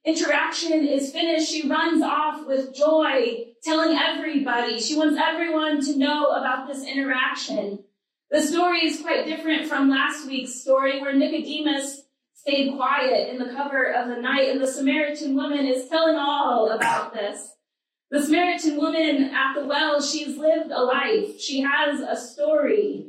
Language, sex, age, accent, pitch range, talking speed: English, female, 30-49, American, 270-310 Hz, 155 wpm